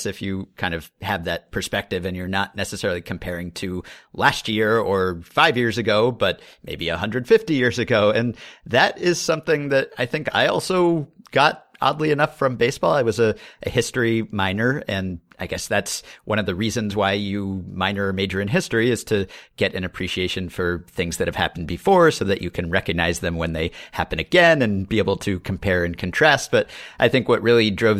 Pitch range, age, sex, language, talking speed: 90-120 Hz, 40-59, male, English, 200 wpm